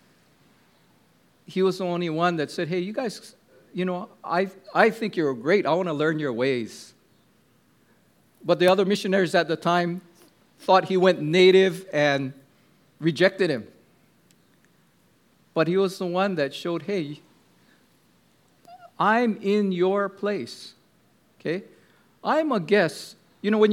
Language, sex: English, male